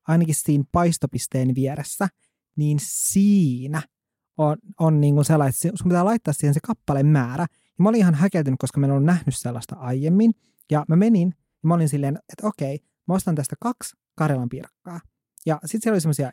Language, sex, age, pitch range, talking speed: Finnish, male, 30-49, 145-190 Hz, 180 wpm